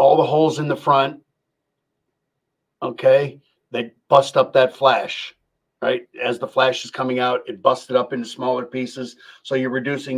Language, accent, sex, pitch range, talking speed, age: English, American, male, 125-135 Hz, 170 wpm, 50-69